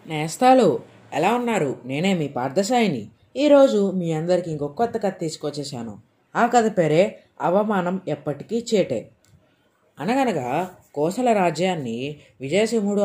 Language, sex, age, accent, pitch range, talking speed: Telugu, female, 30-49, native, 150-195 Hz, 100 wpm